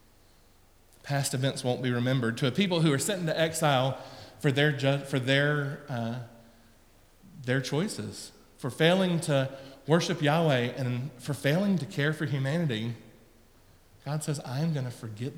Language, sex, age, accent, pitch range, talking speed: English, male, 40-59, American, 115-145 Hz, 155 wpm